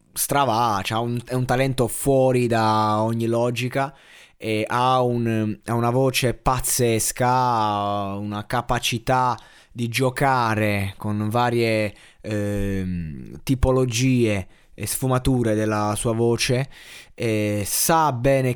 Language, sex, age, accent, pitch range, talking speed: Italian, male, 20-39, native, 105-130 Hz, 110 wpm